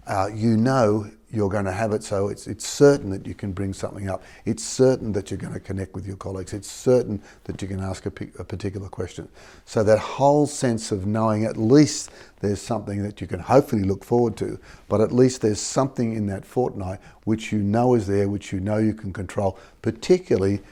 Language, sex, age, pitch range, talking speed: English, male, 50-69, 95-115 Hz, 220 wpm